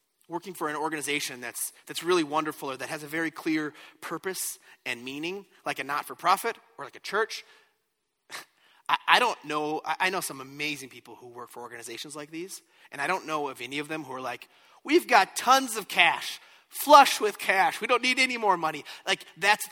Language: English